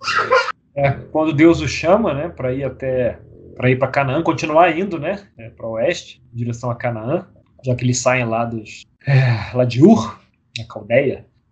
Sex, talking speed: male, 165 wpm